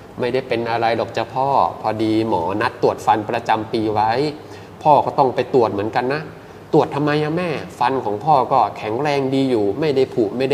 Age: 20-39